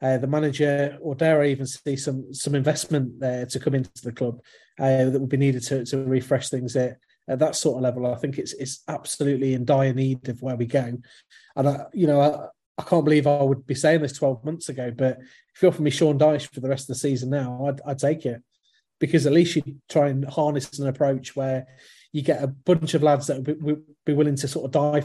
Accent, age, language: British, 30-49, English